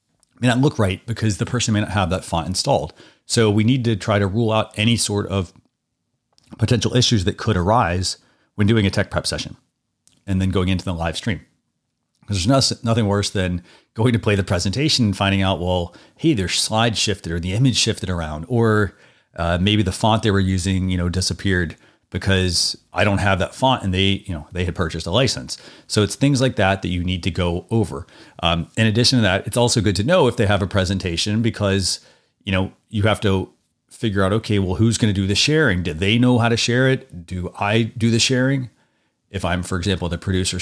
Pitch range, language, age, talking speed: 95-115 Hz, English, 30-49, 220 wpm